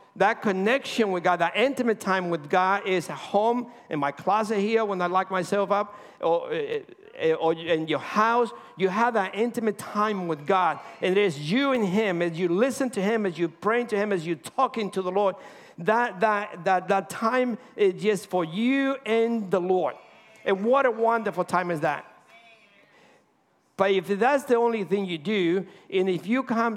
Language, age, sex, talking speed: English, 50-69, male, 195 wpm